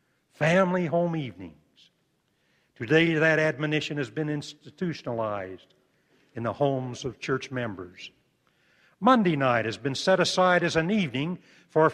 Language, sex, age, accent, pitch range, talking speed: English, male, 60-79, American, 135-180 Hz, 125 wpm